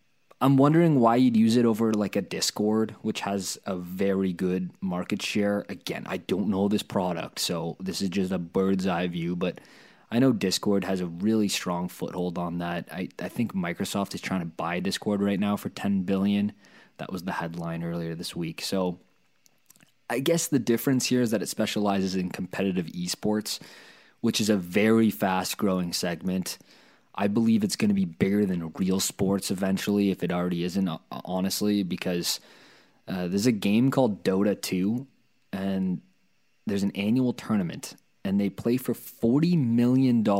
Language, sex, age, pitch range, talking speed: English, male, 20-39, 90-115 Hz, 175 wpm